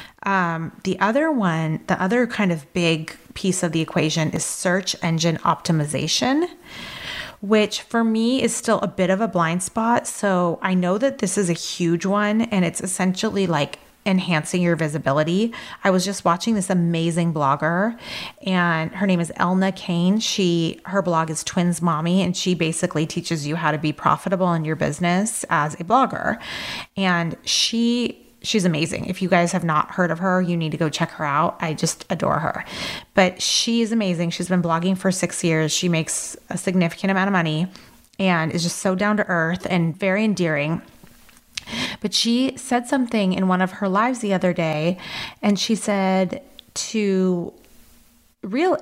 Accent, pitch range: American, 170-210 Hz